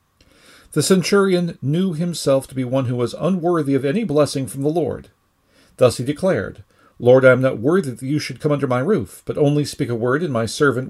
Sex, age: male, 50-69